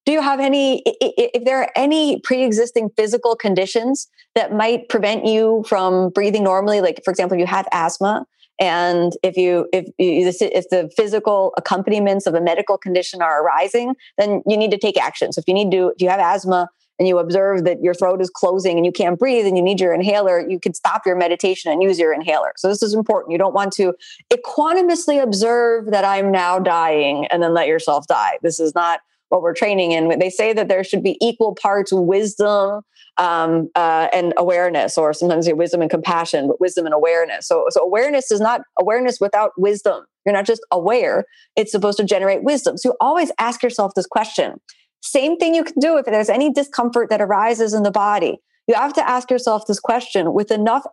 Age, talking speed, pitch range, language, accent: 30-49, 210 wpm, 180-235 Hz, English, American